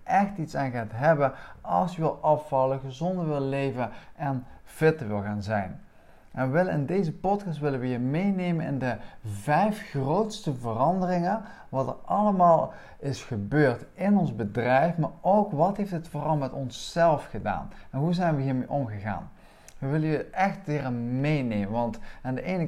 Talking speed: 165 wpm